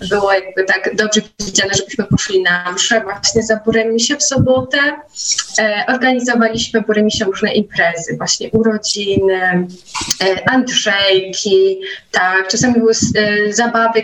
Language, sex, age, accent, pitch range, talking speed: Polish, female, 20-39, native, 195-235 Hz, 125 wpm